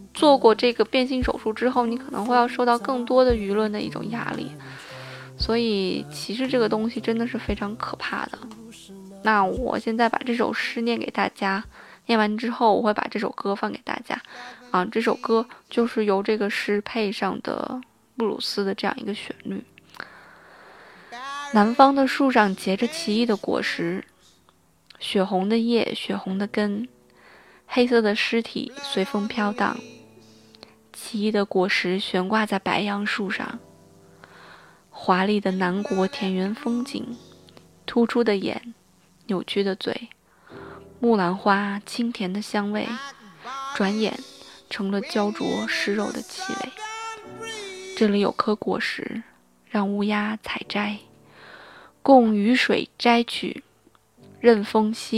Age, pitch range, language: 20-39, 200-240 Hz, Chinese